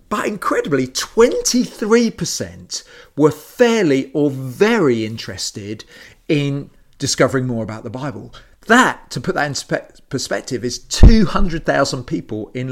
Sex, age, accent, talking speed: male, 40-59, British, 115 wpm